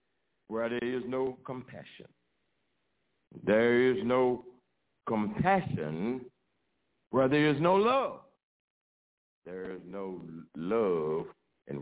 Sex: male